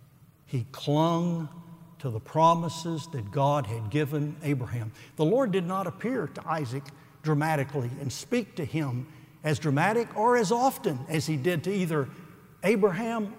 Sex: male